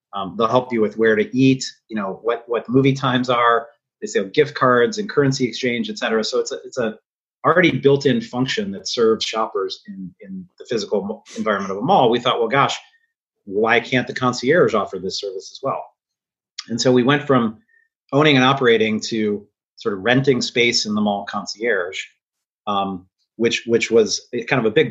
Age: 30-49